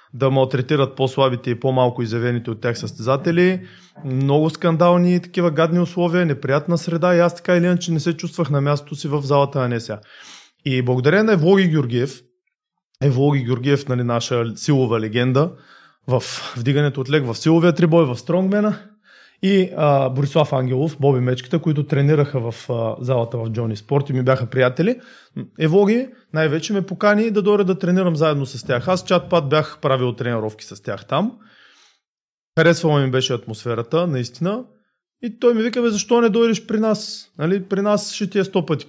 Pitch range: 130-185 Hz